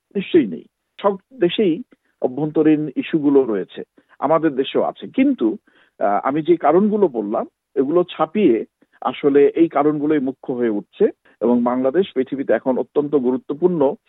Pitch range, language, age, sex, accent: 135-185 Hz, Bengali, 50-69, male, native